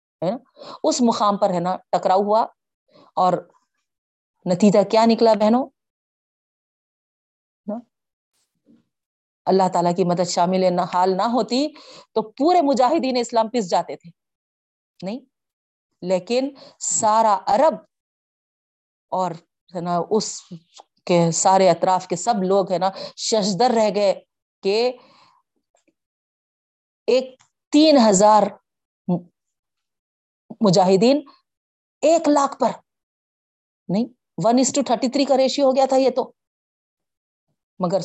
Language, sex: Urdu, female